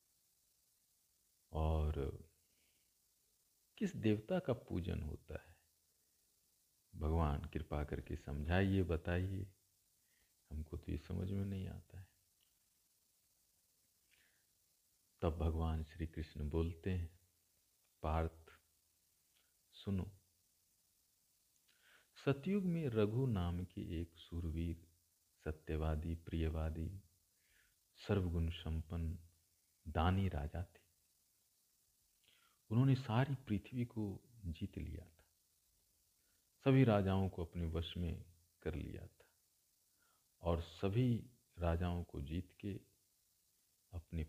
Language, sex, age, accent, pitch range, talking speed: Hindi, male, 50-69, native, 80-100 Hz, 90 wpm